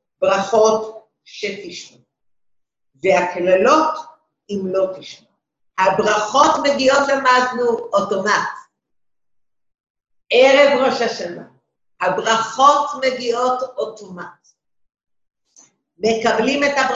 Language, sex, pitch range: English, female, 215-290 Hz